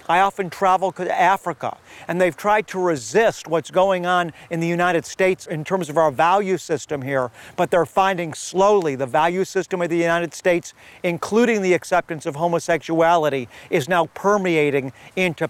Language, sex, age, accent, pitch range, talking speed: English, male, 50-69, American, 145-185 Hz, 170 wpm